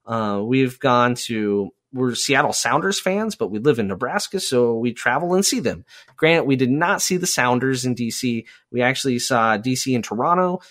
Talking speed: 190 wpm